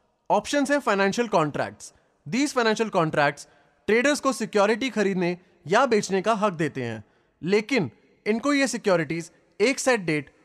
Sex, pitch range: male, 170-235 Hz